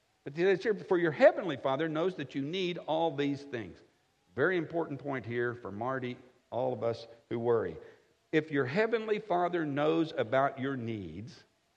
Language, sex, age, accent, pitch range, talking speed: English, male, 60-79, American, 120-170 Hz, 160 wpm